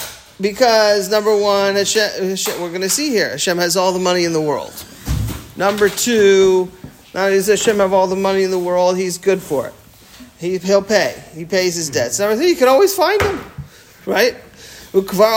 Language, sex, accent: English, male, American